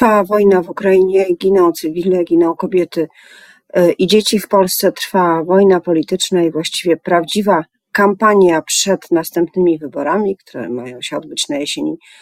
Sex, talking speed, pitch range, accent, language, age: female, 135 wpm, 160-200 Hz, native, Polish, 40-59